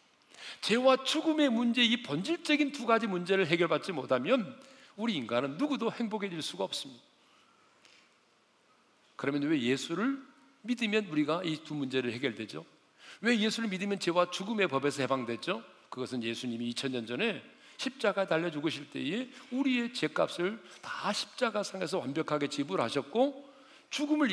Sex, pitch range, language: male, 150-250 Hz, Korean